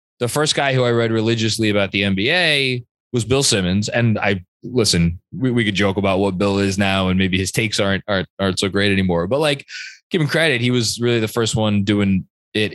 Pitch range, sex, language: 95-125 Hz, male, English